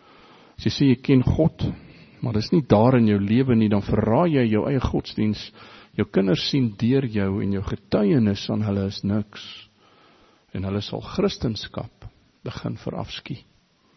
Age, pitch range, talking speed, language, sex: 50-69, 105-160 Hz, 155 wpm, English, male